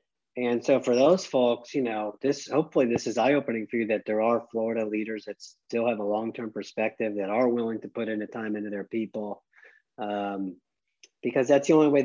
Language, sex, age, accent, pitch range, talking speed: English, male, 40-59, American, 100-120 Hz, 210 wpm